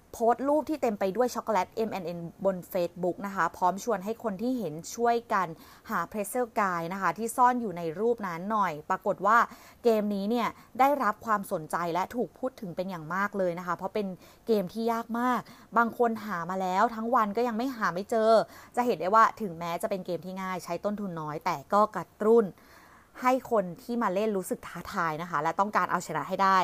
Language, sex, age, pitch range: Thai, female, 30-49, 175-230 Hz